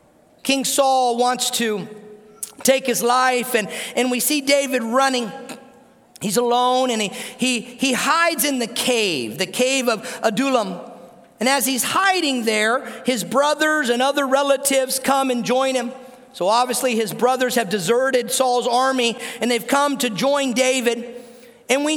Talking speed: 155 wpm